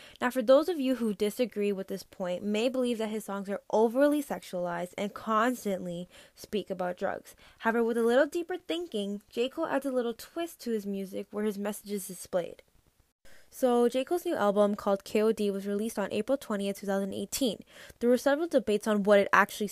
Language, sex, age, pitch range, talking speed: English, female, 10-29, 200-235 Hz, 195 wpm